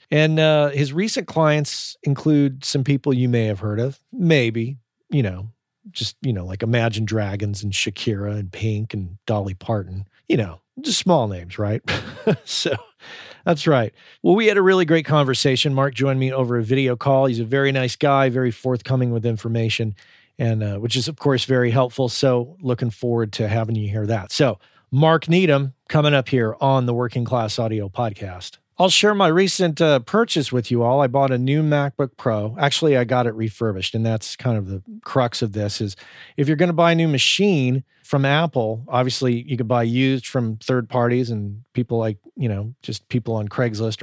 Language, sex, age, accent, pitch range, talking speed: English, male, 40-59, American, 115-140 Hz, 200 wpm